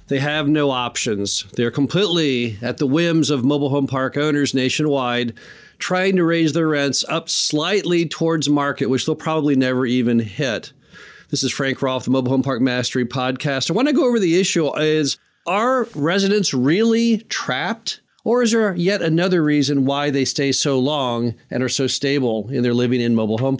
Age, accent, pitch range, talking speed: 40-59, American, 130-170 Hz, 185 wpm